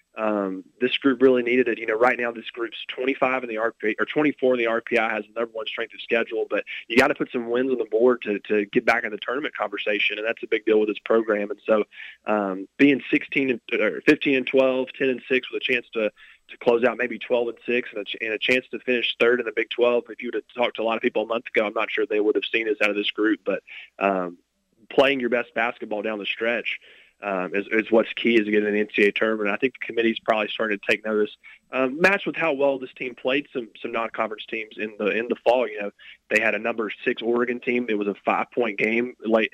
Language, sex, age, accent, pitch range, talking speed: English, male, 20-39, American, 110-130 Hz, 270 wpm